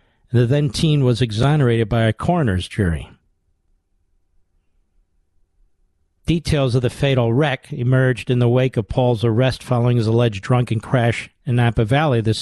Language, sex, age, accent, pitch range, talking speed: English, male, 50-69, American, 85-130 Hz, 145 wpm